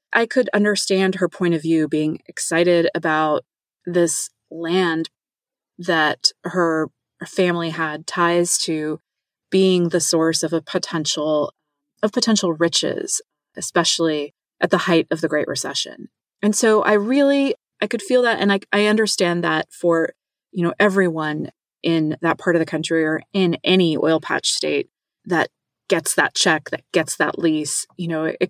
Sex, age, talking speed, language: female, 30-49, 160 wpm, English